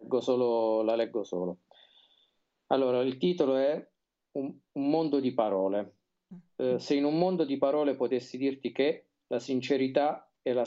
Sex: male